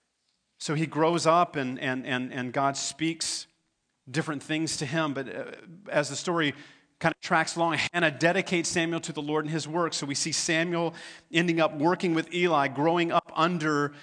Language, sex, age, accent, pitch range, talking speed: English, male, 40-59, American, 130-160 Hz, 190 wpm